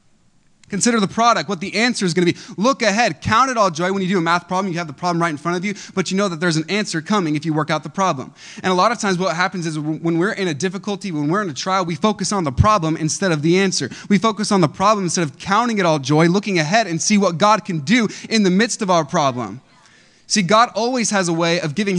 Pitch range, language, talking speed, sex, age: 150-195 Hz, English, 285 wpm, male, 20-39